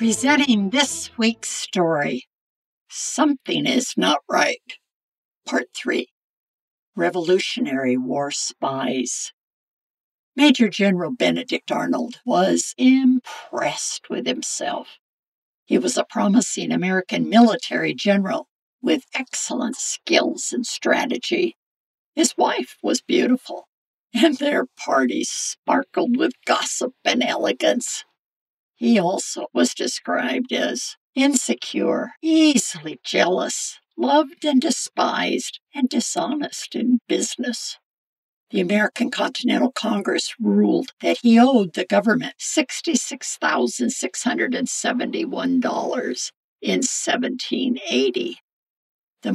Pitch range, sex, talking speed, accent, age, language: 225-300 Hz, female, 90 wpm, American, 60-79, English